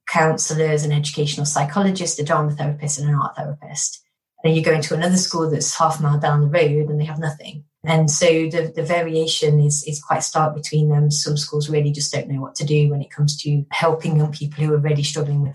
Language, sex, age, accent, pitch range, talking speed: English, female, 30-49, British, 145-165 Hz, 230 wpm